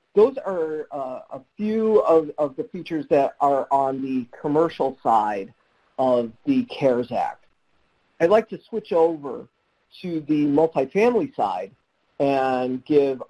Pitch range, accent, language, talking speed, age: 130-175 Hz, American, English, 135 wpm, 50-69